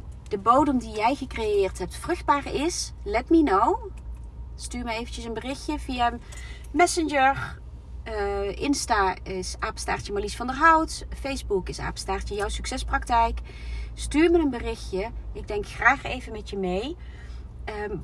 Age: 30-49